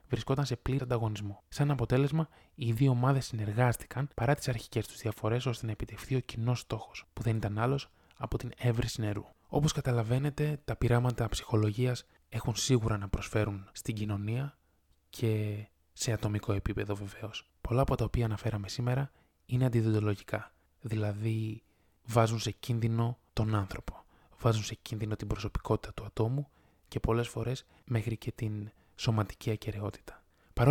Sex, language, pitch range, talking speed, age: male, Greek, 105-120 Hz, 145 wpm, 20-39